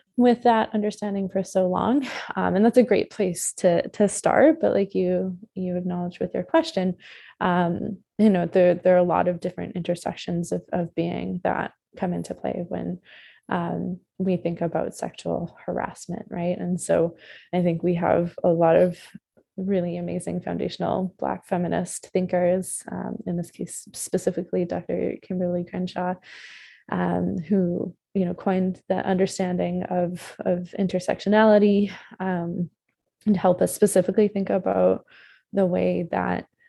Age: 20-39